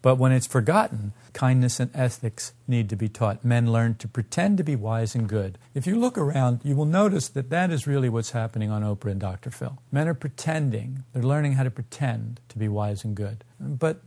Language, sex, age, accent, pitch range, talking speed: English, male, 50-69, American, 115-155 Hz, 220 wpm